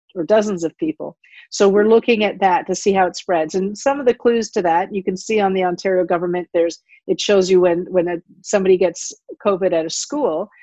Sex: female